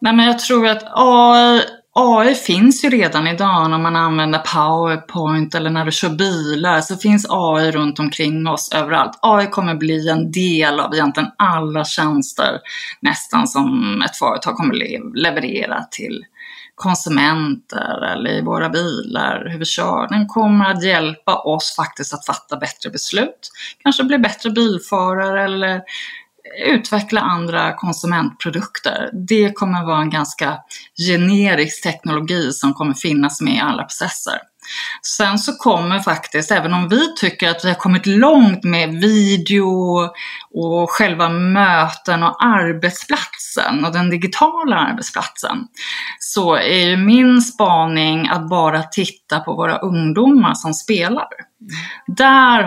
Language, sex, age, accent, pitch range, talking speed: Swedish, female, 20-39, native, 160-220 Hz, 135 wpm